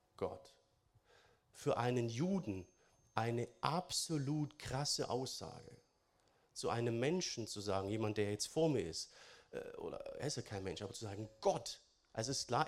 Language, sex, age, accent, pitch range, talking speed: German, male, 40-59, German, 105-140 Hz, 160 wpm